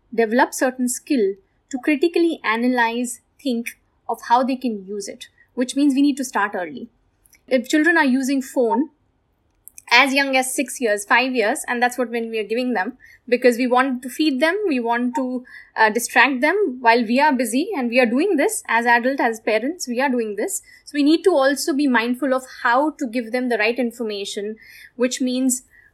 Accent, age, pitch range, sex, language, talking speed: Indian, 20-39, 225-270 Hz, female, English, 200 wpm